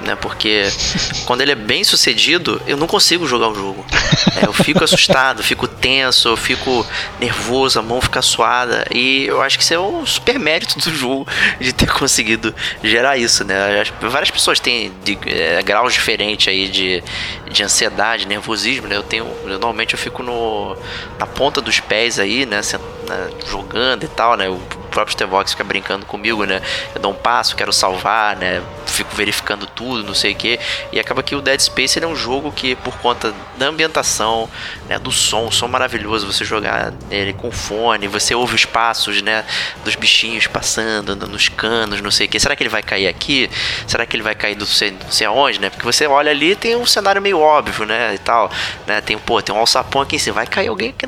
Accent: Brazilian